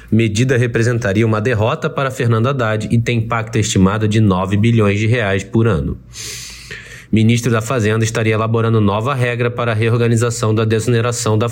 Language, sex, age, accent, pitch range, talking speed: Portuguese, male, 20-39, Brazilian, 110-130 Hz, 165 wpm